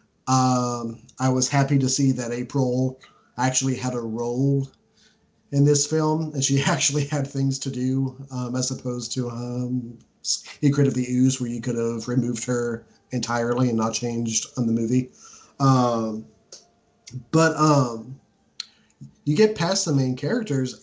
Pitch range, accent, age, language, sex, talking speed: 120-135 Hz, American, 30-49, English, male, 155 wpm